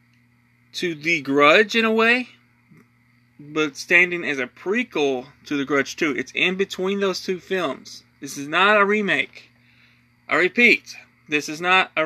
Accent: American